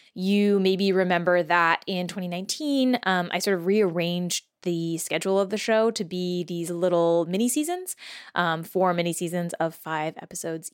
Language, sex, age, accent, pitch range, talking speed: English, female, 20-39, American, 180-235 Hz, 160 wpm